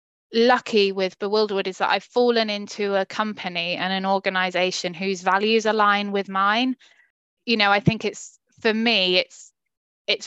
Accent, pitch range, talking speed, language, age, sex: British, 190-230 Hz, 160 wpm, English, 20-39, female